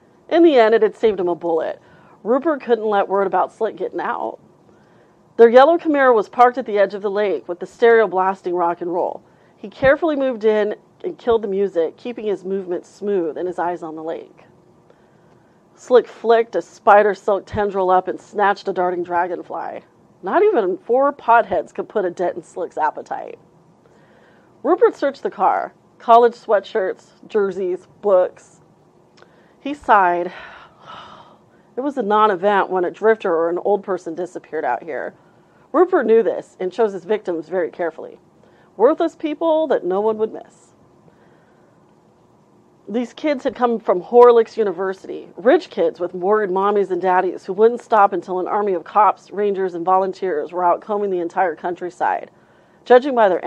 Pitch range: 185-235 Hz